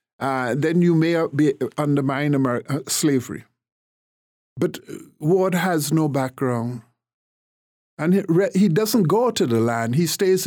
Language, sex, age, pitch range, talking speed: English, male, 60-79, 125-160 Hz, 145 wpm